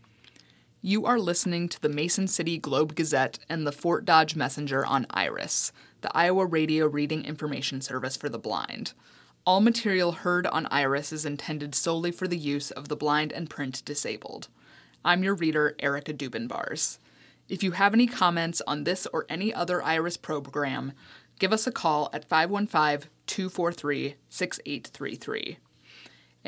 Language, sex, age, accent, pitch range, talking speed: English, female, 20-39, American, 135-175 Hz, 145 wpm